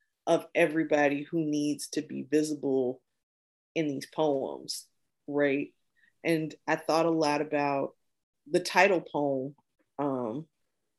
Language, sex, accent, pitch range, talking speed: English, female, American, 150-195 Hz, 115 wpm